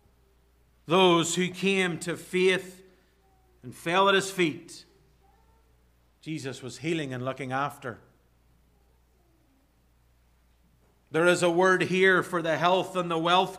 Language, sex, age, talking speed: English, male, 50-69, 120 wpm